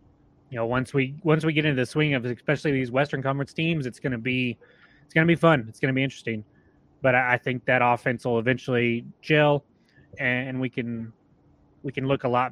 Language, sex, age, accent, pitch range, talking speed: English, male, 20-39, American, 130-155 Hz, 210 wpm